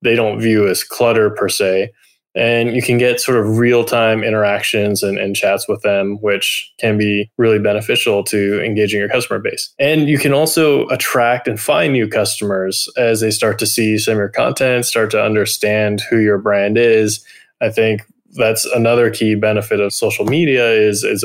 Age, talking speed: 20-39, 185 wpm